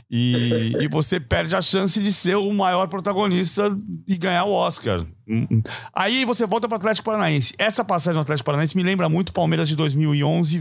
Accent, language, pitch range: Brazilian, Portuguese, 115-160 Hz